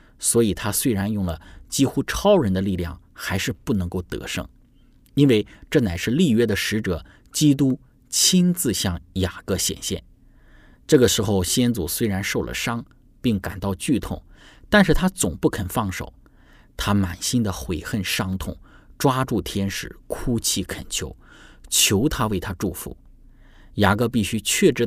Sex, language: male, Chinese